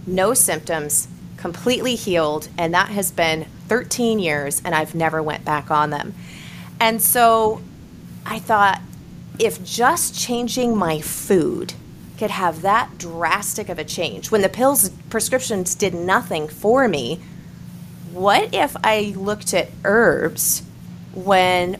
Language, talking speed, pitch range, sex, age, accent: English, 130 wpm, 160-210 Hz, female, 30-49, American